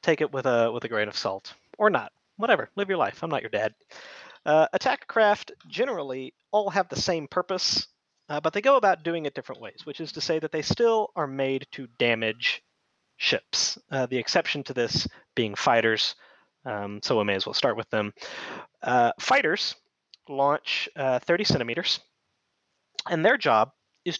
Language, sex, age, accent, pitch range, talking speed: English, male, 30-49, American, 115-180 Hz, 185 wpm